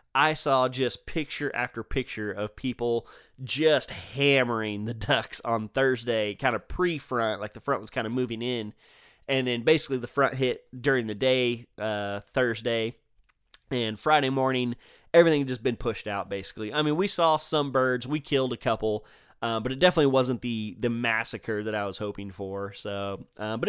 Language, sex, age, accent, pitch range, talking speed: English, male, 20-39, American, 115-145 Hz, 180 wpm